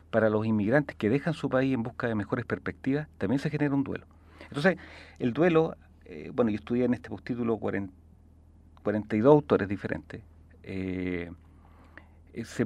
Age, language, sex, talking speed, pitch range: 40-59, Spanish, male, 150 wpm, 90-130 Hz